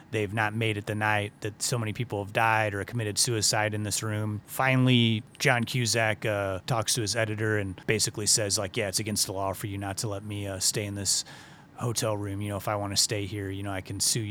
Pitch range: 110-130 Hz